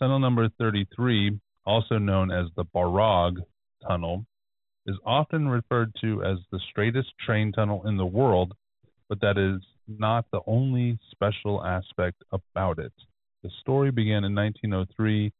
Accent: American